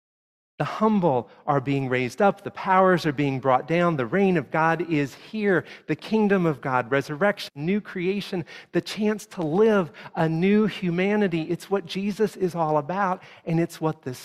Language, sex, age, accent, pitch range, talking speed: English, male, 50-69, American, 135-185 Hz, 175 wpm